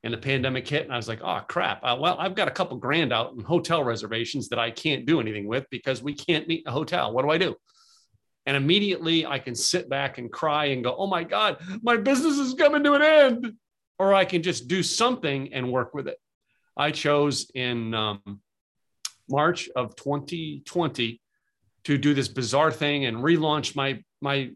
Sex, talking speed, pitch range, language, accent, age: male, 200 wpm, 130-180 Hz, English, American, 40-59